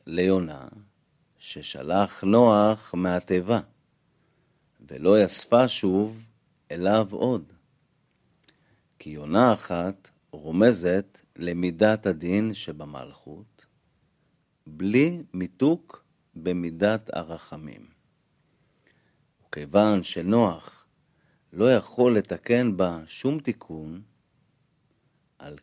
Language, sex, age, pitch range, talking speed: Hebrew, male, 50-69, 90-120 Hz, 70 wpm